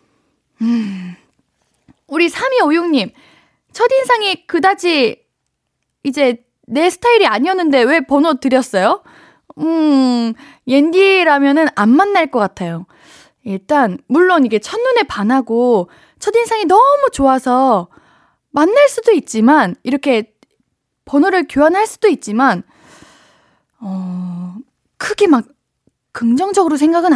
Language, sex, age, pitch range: Korean, female, 20-39, 225-335 Hz